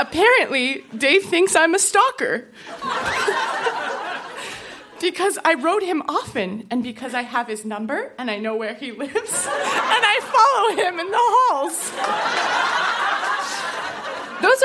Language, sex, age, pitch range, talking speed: English, female, 20-39, 220-355 Hz, 125 wpm